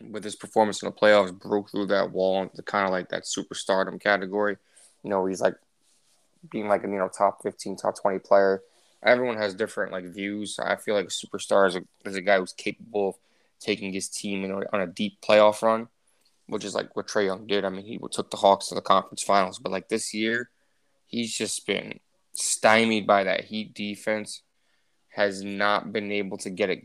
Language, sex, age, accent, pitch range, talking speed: English, male, 20-39, American, 100-110 Hz, 205 wpm